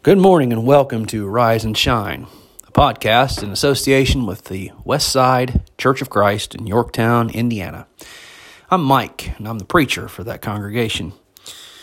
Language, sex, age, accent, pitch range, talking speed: English, male, 30-49, American, 110-145 Hz, 155 wpm